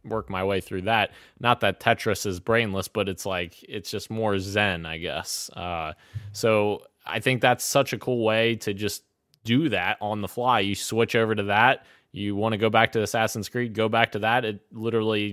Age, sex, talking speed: 20-39, male, 210 wpm